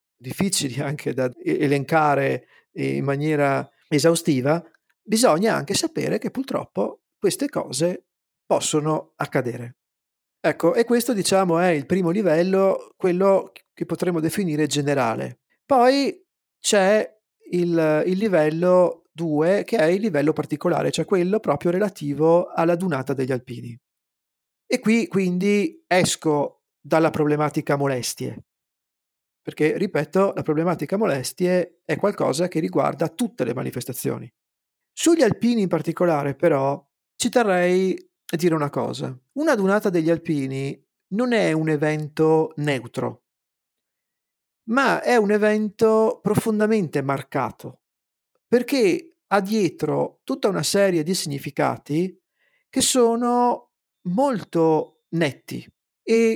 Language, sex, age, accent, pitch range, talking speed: Italian, male, 40-59, native, 150-210 Hz, 115 wpm